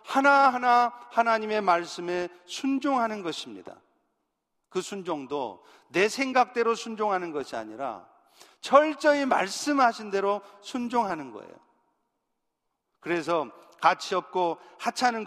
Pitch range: 195-240 Hz